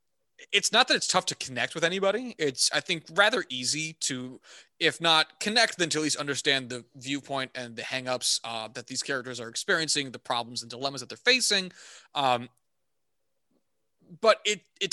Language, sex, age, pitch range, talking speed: English, male, 20-39, 130-160 Hz, 180 wpm